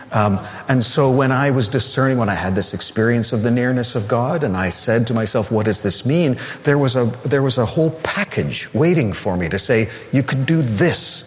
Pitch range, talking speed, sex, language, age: 105-130 Hz, 230 wpm, male, English, 50-69